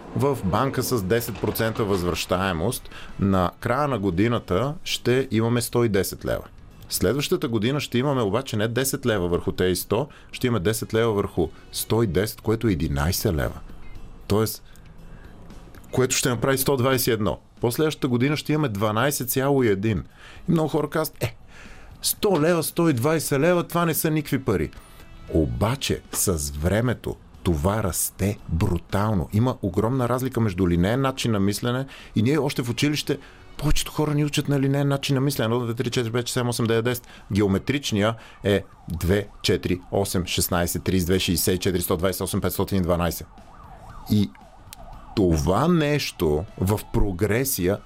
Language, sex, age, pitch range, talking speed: Bulgarian, male, 40-59, 95-130 Hz, 140 wpm